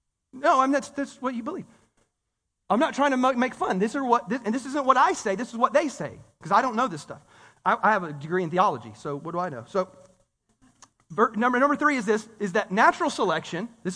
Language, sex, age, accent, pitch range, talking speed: English, male, 30-49, American, 150-215 Hz, 250 wpm